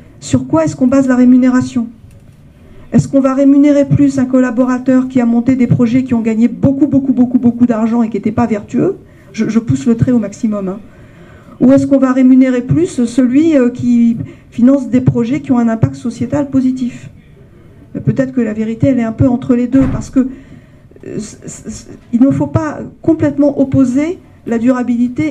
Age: 50-69